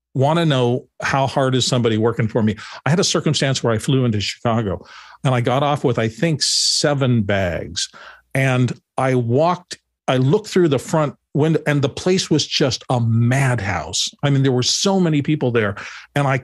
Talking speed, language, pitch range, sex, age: 195 wpm, English, 115-145 Hz, male, 50-69